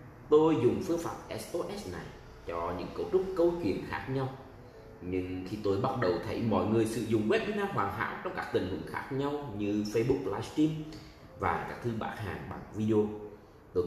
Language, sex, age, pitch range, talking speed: Vietnamese, male, 30-49, 100-140 Hz, 190 wpm